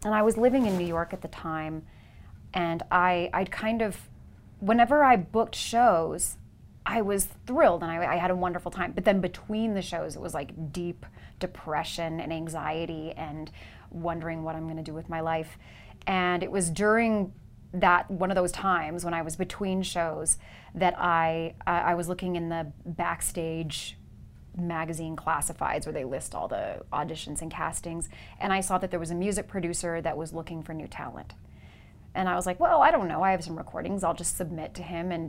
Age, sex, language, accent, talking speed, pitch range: 30-49, female, English, American, 200 wpm, 165-210 Hz